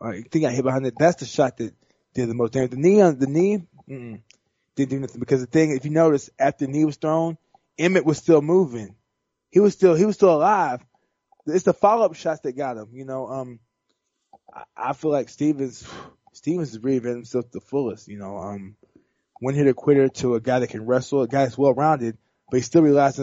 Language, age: English, 20-39